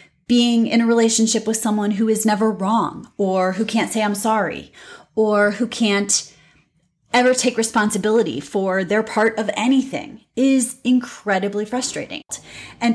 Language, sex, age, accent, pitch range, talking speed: English, female, 30-49, American, 195-240 Hz, 145 wpm